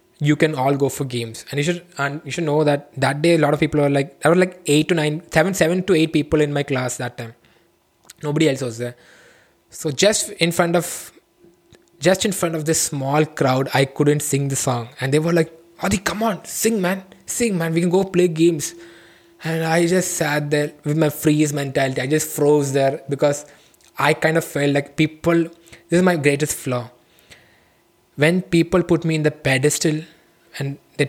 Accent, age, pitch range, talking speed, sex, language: Indian, 20-39, 135-165 Hz, 210 wpm, male, English